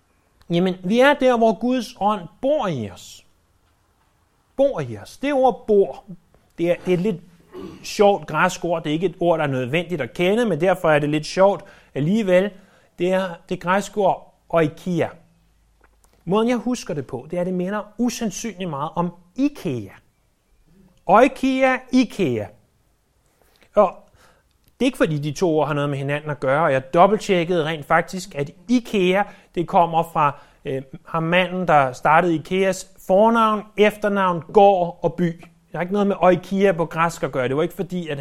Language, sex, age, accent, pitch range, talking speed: Danish, male, 30-49, native, 150-200 Hz, 175 wpm